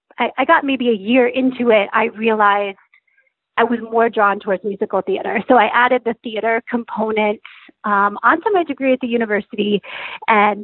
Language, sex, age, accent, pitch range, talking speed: English, female, 30-49, American, 220-290 Hz, 170 wpm